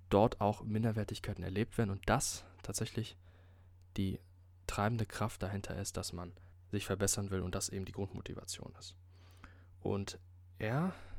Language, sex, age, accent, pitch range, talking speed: German, male, 20-39, German, 90-115 Hz, 140 wpm